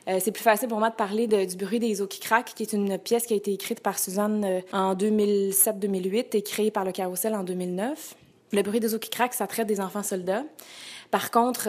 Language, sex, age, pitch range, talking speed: French, female, 20-39, 190-220 Hz, 245 wpm